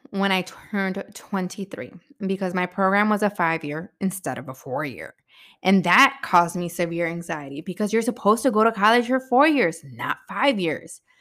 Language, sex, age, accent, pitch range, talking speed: English, female, 20-39, American, 175-220 Hz, 185 wpm